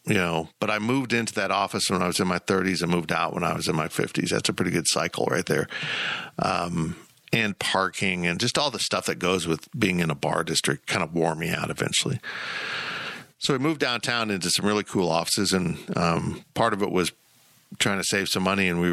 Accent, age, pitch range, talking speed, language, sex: American, 50-69, 90-105 Hz, 235 wpm, English, male